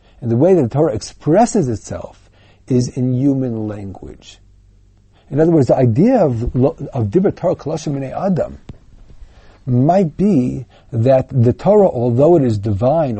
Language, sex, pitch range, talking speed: English, male, 110-155 Hz, 140 wpm